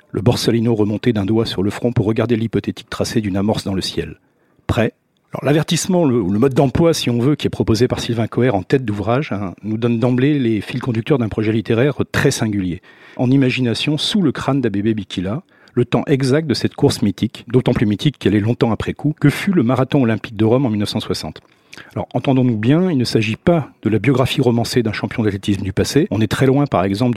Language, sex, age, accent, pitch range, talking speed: French, male, 50-69, French, 105-140 Hz, 225 wpm